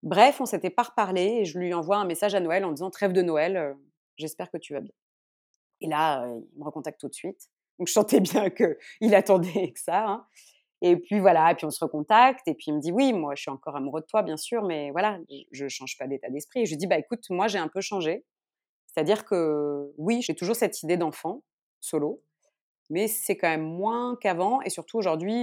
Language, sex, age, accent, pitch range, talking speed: French, female, 30-49, French, 160-215 Hz, 240 wpm